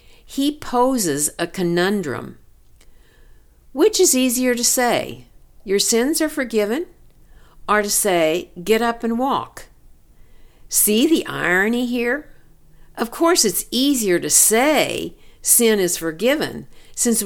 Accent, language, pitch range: American, English, 175-250 Hz